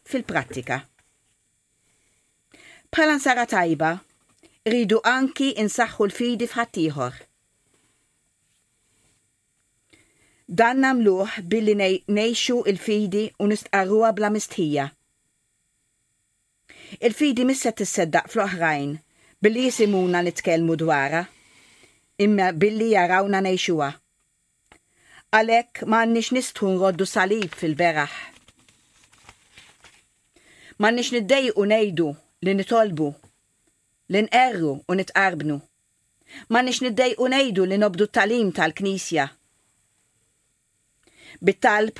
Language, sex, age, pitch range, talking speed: English, female, 50-69, 160-225 Hz, 75 wpm